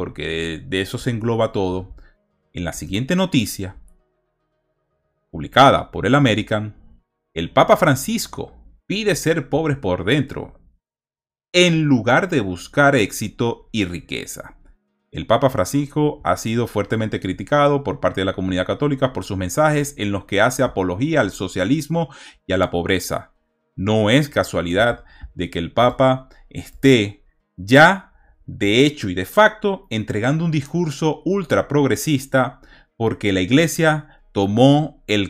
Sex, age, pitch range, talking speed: male, 30-49, 95-140 Hz, 135 wpm